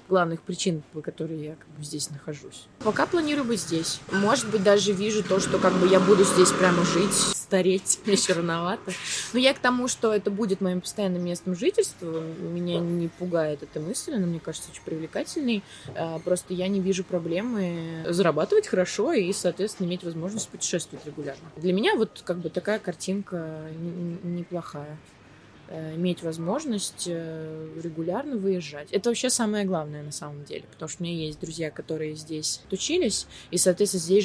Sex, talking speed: female, 170 wpm